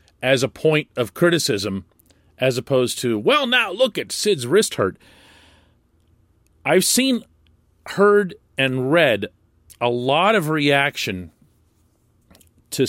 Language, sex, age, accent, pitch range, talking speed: English, male, 40-59, American, 90-135 Hz, 115 wpm